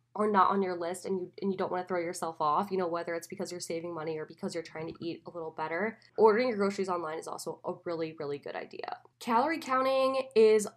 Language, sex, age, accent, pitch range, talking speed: English, female, 10-29, American, 165-200 Hz, 255 wpm